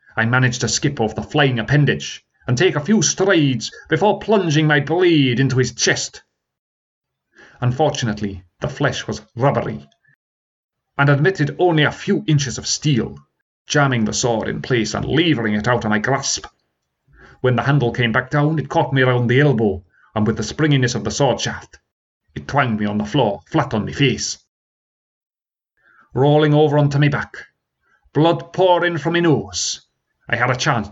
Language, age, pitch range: English, 30-49, 115-145 Hz